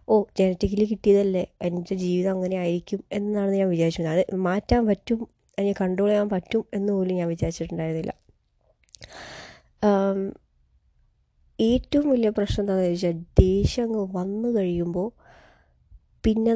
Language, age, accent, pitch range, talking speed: Malayalam, 20-39, native, 175-200 Hz, 105 wpm